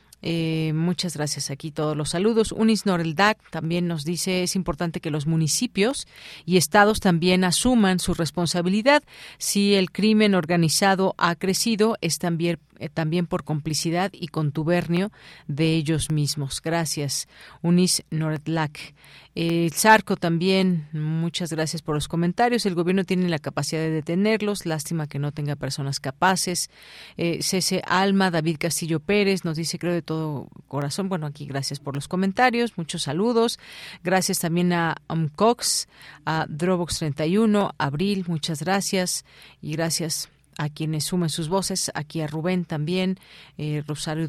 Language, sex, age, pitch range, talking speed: Spanish, female, 40-59, 155-185 Hz, 140 wpm